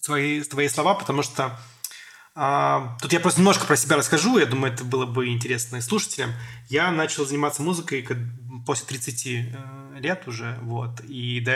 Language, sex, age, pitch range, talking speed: Russian, male, 20-39, 125-150 Hz, 165 wpm